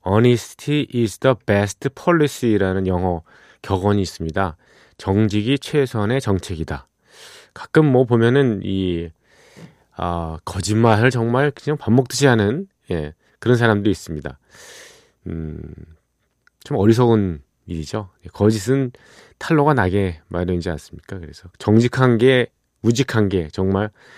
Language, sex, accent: Korean, male, native